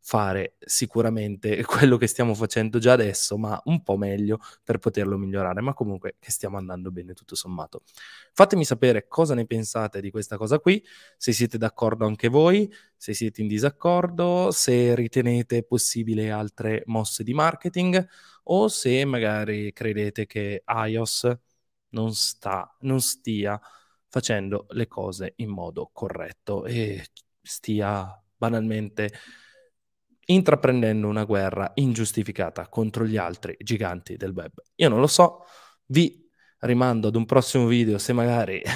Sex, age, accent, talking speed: male, 20-39, native, 140 wpm